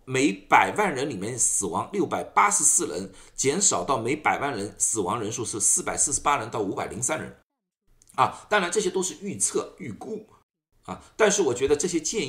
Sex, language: male, Chinese